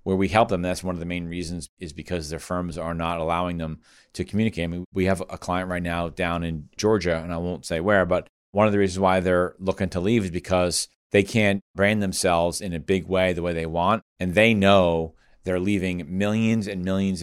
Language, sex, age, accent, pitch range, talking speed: English, male, 40-59, American, 85-100 Hz, 235 wpm